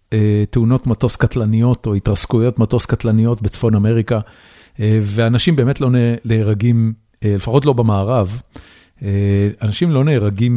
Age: 40-59